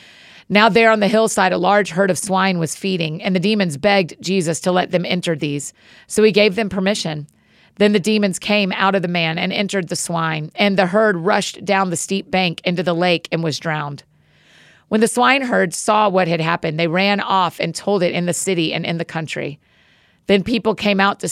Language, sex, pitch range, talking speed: English, female, 170-200 Hz, 220 wpm